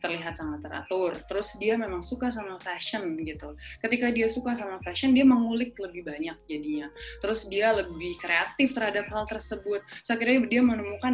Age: 20-39